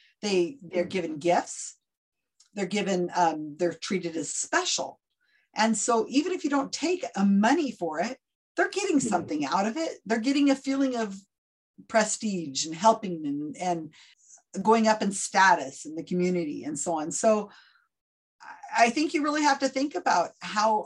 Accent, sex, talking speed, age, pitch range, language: American, female, 165 wpm, 50-69, 170-240 Hz, English